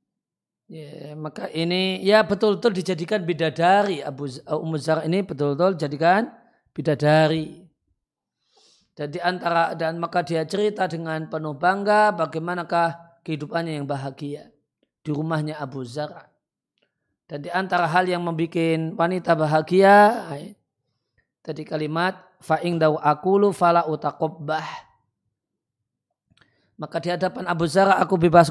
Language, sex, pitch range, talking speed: Indonesian, male, 155-190 Hz, 110 wpm